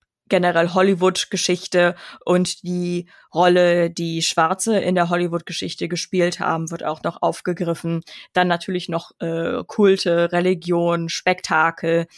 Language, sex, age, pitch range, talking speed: German, female, 20-39, 175-210 Hz, 115 wpm